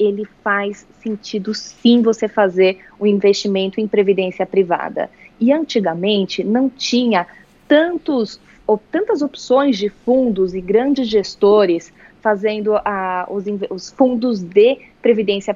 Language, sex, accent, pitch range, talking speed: Portuguese, female, Brazilian, 200-260 Hz, 125 wpm